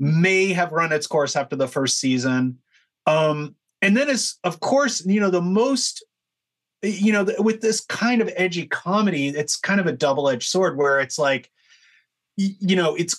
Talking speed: 180 wpm